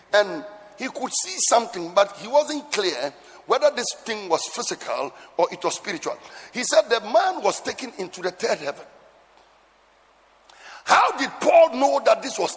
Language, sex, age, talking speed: English, male, 60-79, 165 wpm